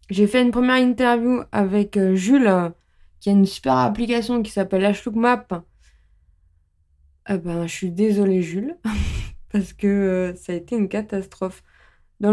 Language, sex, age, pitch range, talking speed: French, female, 20-39, 185-235 Hz, 160 wpm